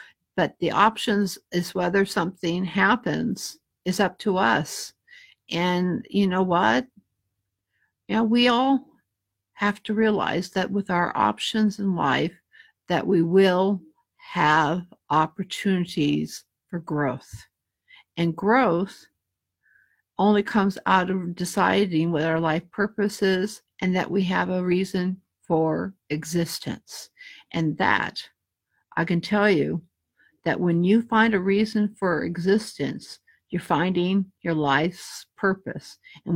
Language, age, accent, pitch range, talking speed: English, 60-79, American, 170-215 Hz, 125 wpm